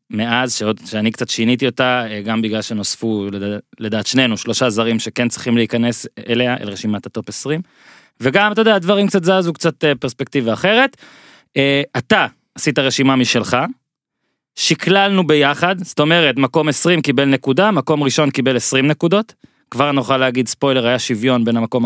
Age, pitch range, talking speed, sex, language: 20-39, 115-145 Hz, 150 wpm, male, Hebrew